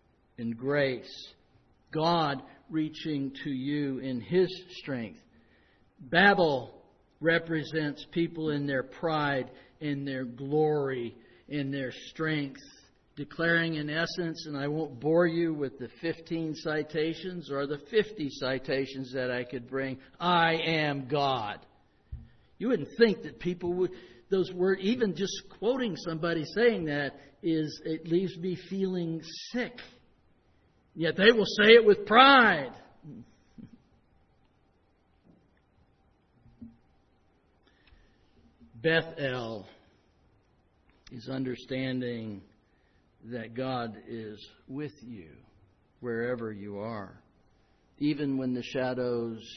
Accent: American